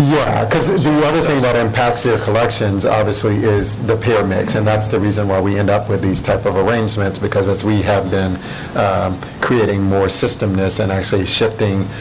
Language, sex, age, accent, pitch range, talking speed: English, male, 50-69, American, 95-110 Hz, 195 wpm